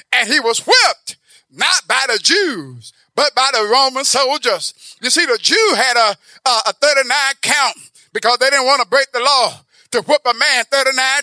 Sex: male